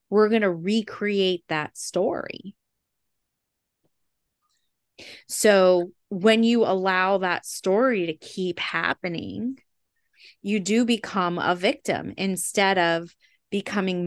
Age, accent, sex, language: 20-39, American, female, English